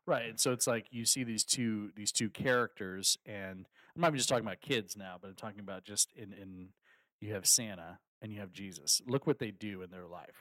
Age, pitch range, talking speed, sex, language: 40-59, 100-120 Hz, 235 wpm, male, English